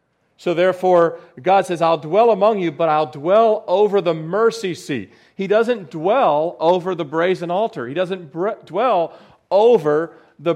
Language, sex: English, male